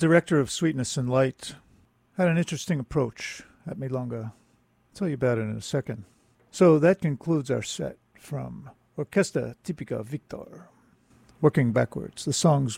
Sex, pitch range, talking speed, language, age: male, 120-155 Hz, 150 wpm, English, 50-69